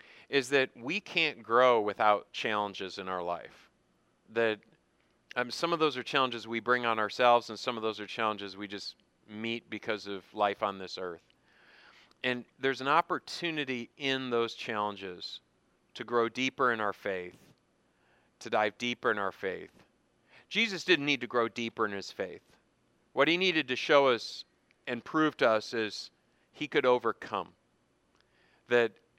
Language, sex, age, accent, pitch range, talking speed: English, male, 40-59, American, 110-145 Hz, 160 wpm